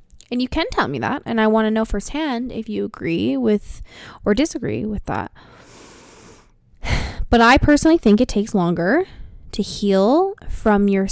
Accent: American